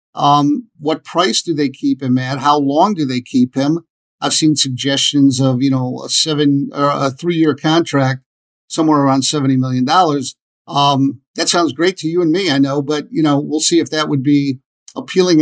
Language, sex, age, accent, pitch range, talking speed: English, male, 50-69, American, 135-160 Hz, 200 wpm